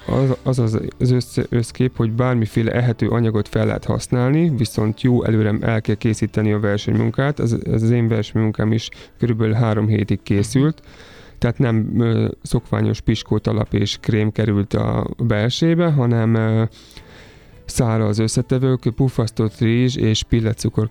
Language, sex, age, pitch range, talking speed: Hungarian, male, 30-49, 105-120 Hz, 140 wpm